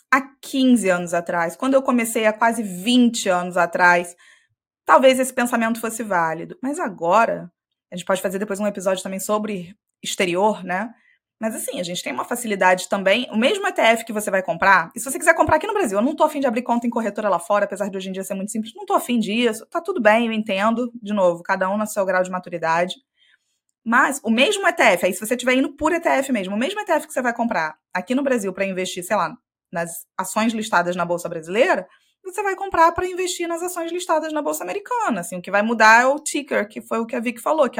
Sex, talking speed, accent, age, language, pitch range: female, 235 wpm, Brazilian, 20-39, Portuguese, 195-275 Hz